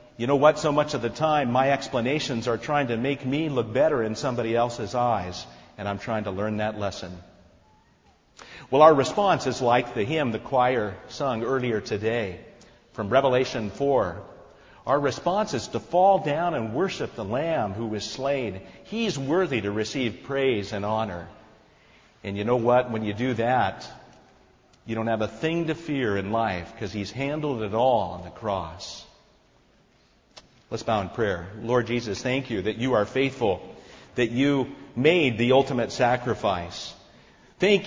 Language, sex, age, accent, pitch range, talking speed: English, male, 50-69, American, 100-135 Hz, 170 wpm